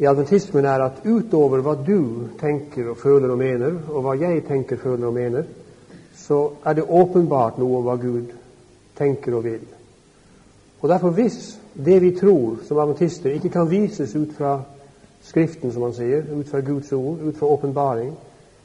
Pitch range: 125-165 Hz